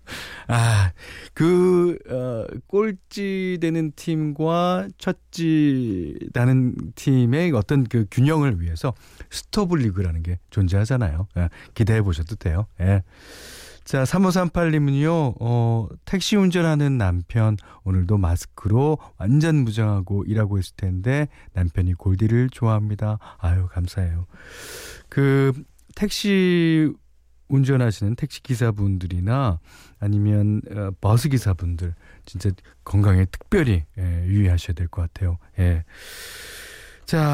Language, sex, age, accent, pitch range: Korean, male, 40-59, native, 90-145 Hz